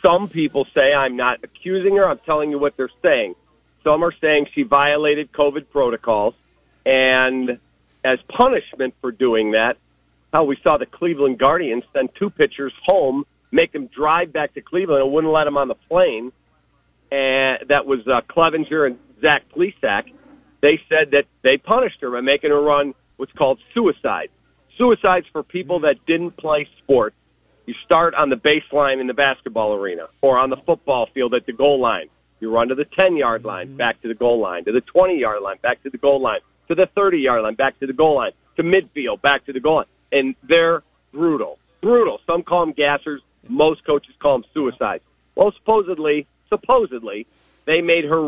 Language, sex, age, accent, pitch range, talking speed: English, male, 50-69, American, 130-165 Hz, 185 wpm